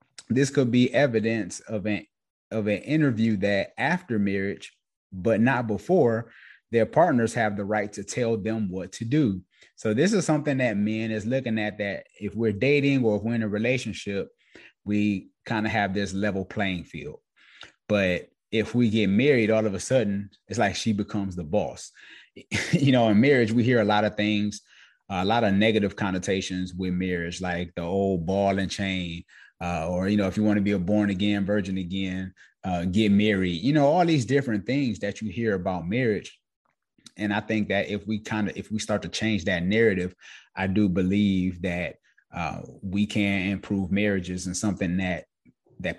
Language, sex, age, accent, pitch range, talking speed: English, male, 30-49, American, 95-115 Hz, 190 wpm